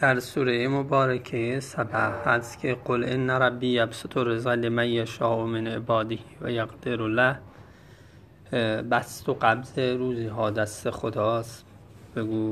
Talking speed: 130 wpm